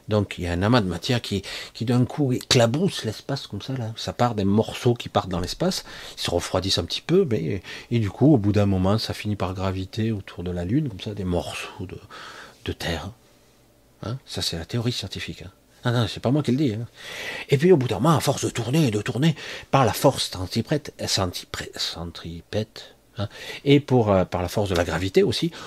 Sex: male